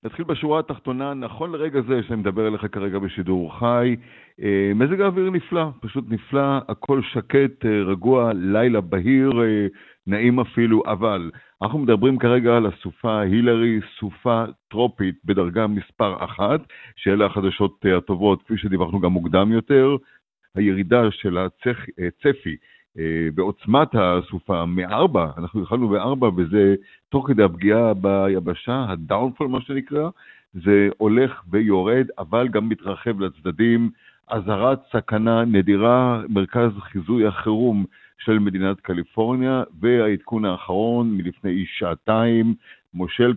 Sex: male